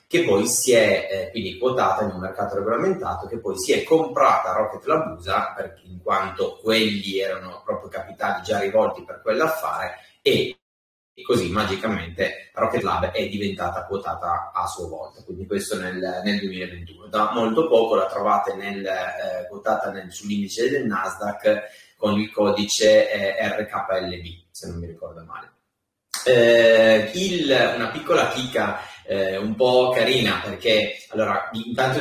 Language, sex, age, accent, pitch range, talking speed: Italian, male, 30-49, native, 100-140 Hz, 150 wpm